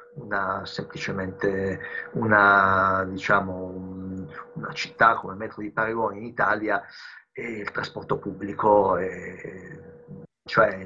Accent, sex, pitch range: native, male, 100-120 Hz